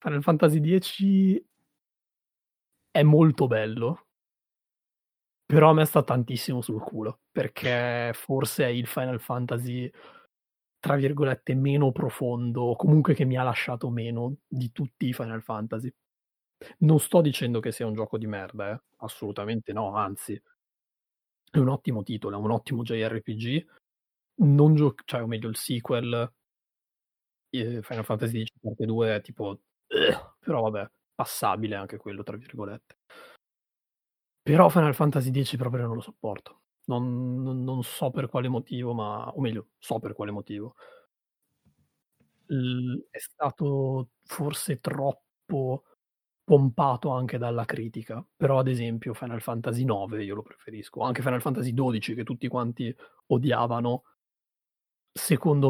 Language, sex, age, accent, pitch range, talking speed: Italian, male, 30-49, native, 115-140 Hz, 135 wpm